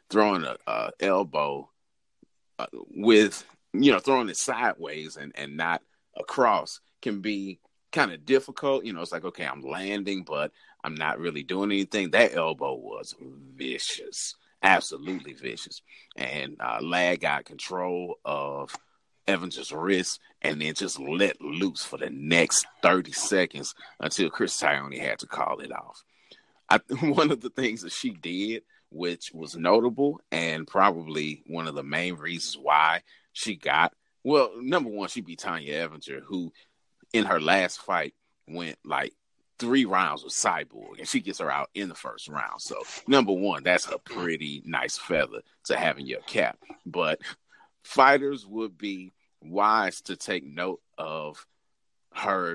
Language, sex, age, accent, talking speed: English, male, 40-59, American, 155 wpm